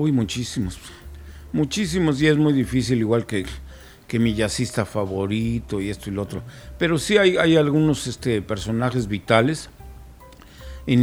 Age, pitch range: 50-69, 100-125 Hz